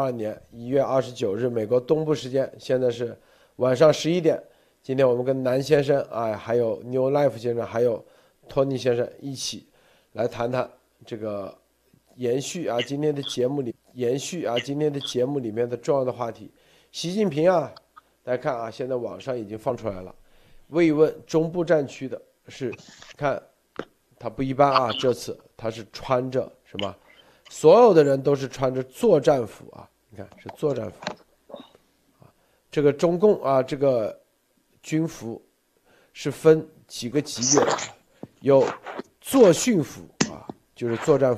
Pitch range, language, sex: 120-150 Hz, Chinese, male